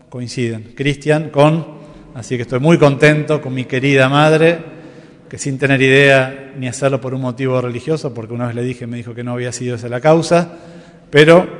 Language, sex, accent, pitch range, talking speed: Spanish, male, Argentinian, 130-165 Hz, 190 wpm